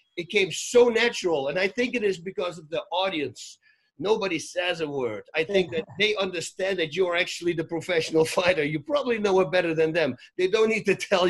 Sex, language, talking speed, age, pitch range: male, English, 220 wpm, 50-69, 150-195 Hz